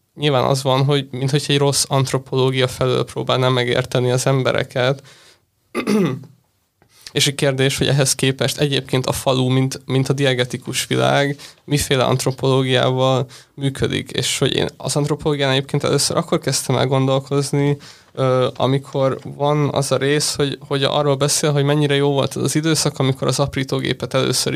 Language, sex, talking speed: Hungarian, male, 150 wpm